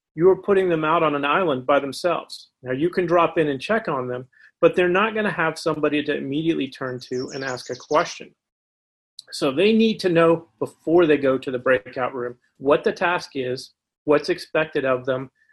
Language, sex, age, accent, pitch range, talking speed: English, male, 40-59, American, 135-180 Hz, 205 wpm